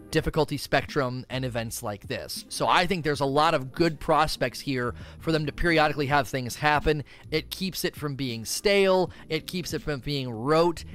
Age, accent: 30-49, American